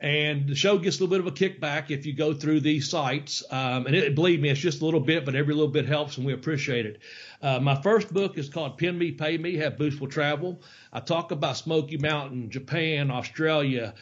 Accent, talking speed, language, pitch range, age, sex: American, 235 wpm, English, 140-165 Hz, 40-59, male